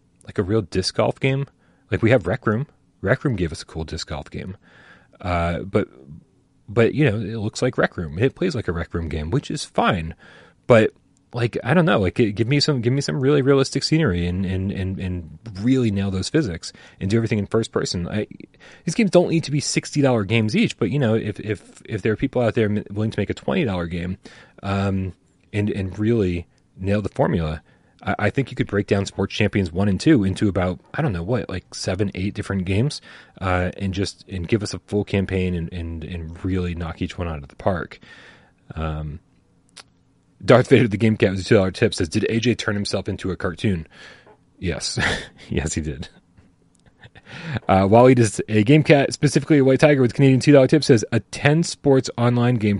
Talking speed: 215 wpm